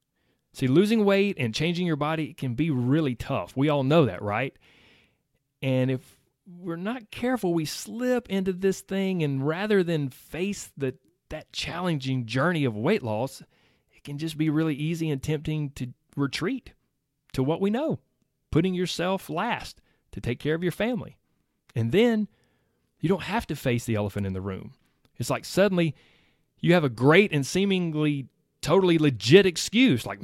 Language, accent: English, American